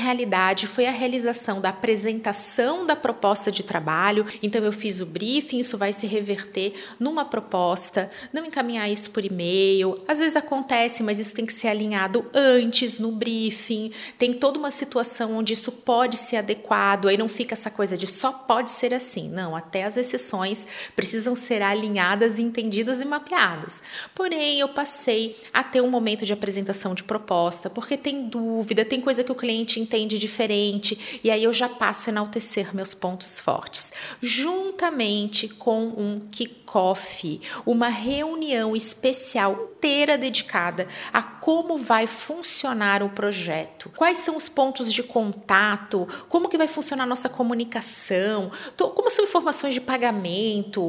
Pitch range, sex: 205-255 Hz, female